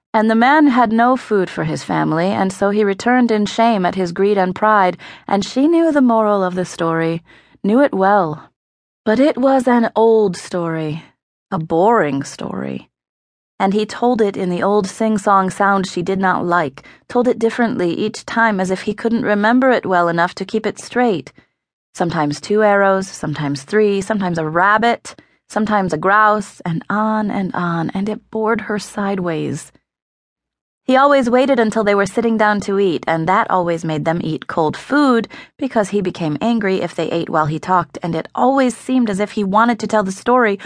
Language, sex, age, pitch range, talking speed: English, female, 30-49, 180-235 Hz, 190 wpm